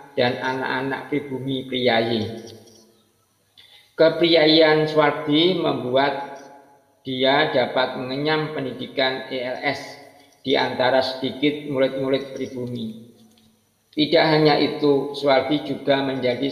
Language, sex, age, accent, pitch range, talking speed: Indonesian, male, 50-69, native, 120-150 Hz, 85 wpm